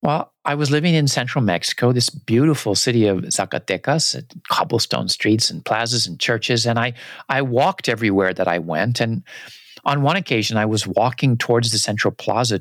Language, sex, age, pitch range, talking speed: English, male, 50-69, 105-135 Hz, 175 wpm